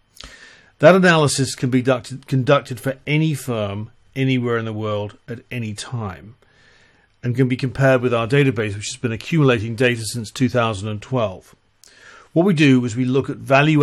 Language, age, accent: English, 40-59, British